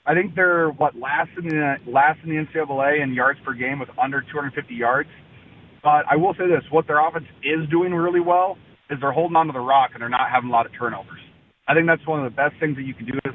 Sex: male